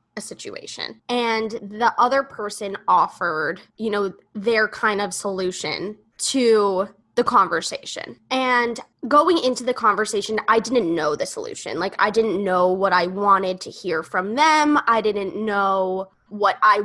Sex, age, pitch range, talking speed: female, 10-29, 195-265 Hz, 150 wpm